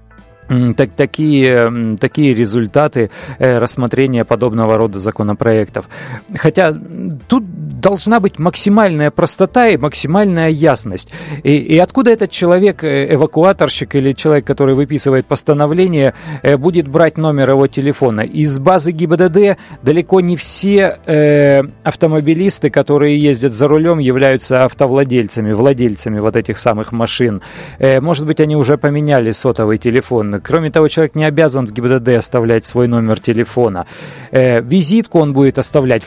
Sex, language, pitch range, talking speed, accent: male, Russian, 130-165 Hz, 130 wpm, native